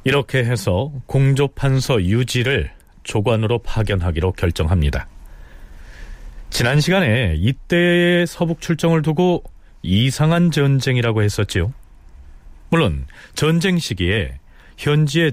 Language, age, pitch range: Korean, 40-59, 90-140 Hz